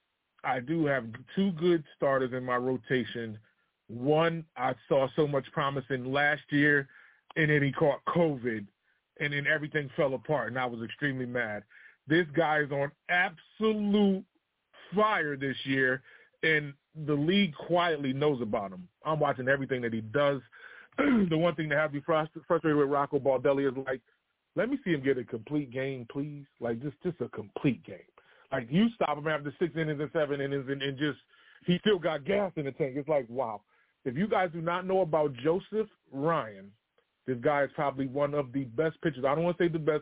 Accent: American